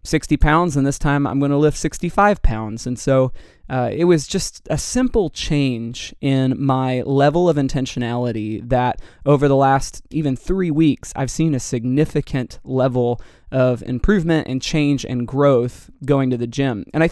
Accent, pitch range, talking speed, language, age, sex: American, 125-150 Hz, 170 wpm, English, 20-39, male